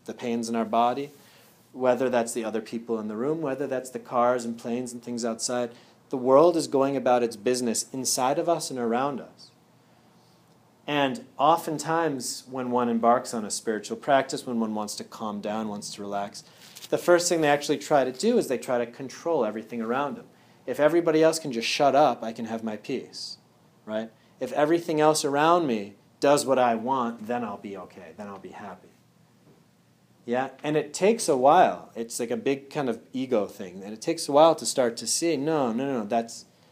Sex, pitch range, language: male, 115-145 Hz, English